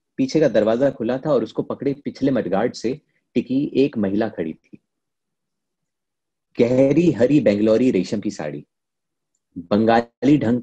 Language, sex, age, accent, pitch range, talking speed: Hindi, male, 30-49, native, 120-160 Hz, 135 wpm